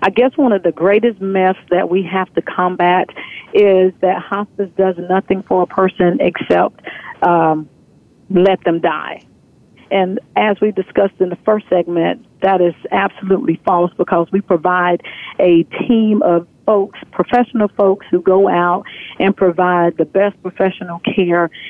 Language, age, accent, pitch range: English, 50-69, American, 185-220 Hz